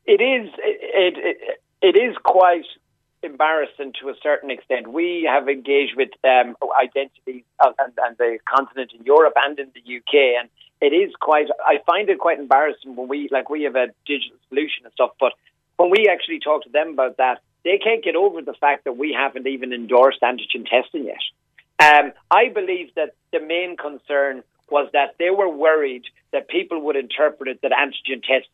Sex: male